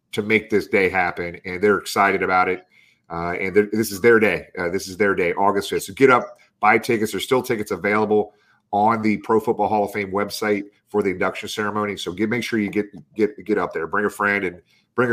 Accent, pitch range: American, 90-115 Hz